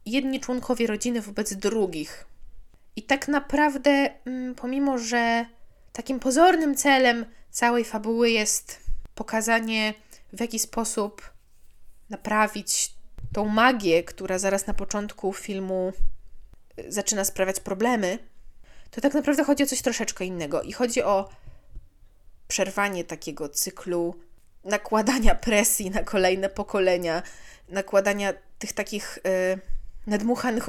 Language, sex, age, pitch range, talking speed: Polish, female, 20-39, 195-250 Hz, 105 wpm